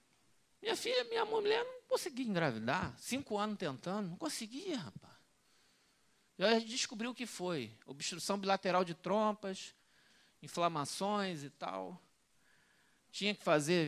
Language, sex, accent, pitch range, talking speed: Portuguese, male, Brazilian, 160-235 Hz, 125 wpm